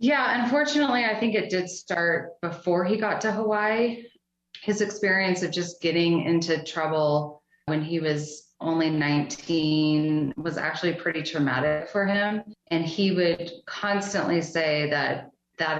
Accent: American